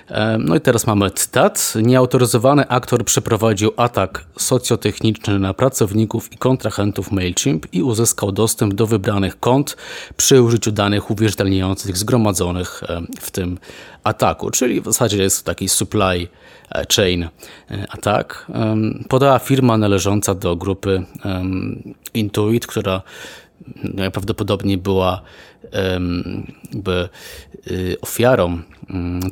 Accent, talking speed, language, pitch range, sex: native, 110 wpm, Polish, 95-110 Hz, male